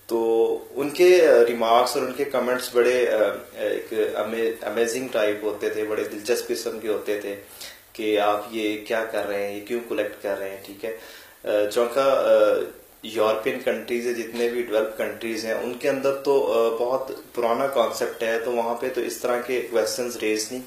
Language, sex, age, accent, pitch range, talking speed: English, male, 30-49, Indian, 110-150 Hz, 175 wpm